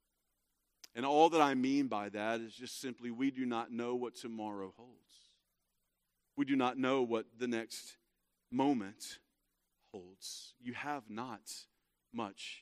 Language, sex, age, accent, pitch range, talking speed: English, male, 40-59, American, 105-145 Hz, 145 wpm